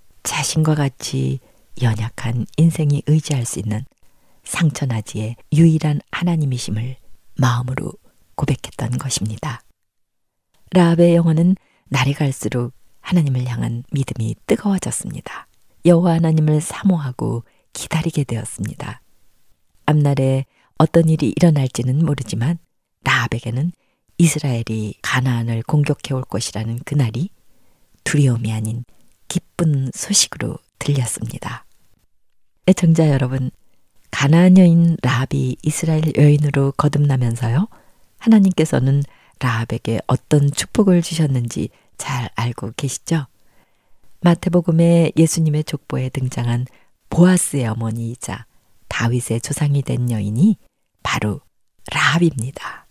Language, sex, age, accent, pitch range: Korean, female, 40-59, native, 120-160 Hz